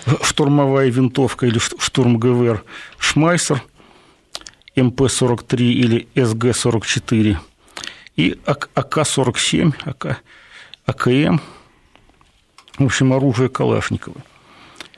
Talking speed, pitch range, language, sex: 65 wpm, 115-140 Hz, Russian, male